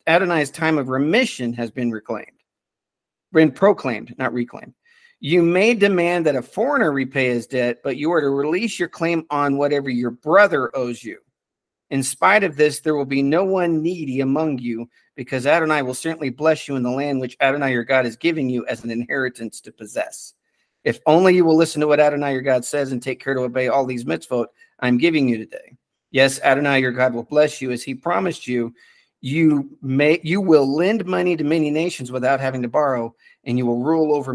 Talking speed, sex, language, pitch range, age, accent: 205 wpm, male, English, 125-155 Hz, 50-69, American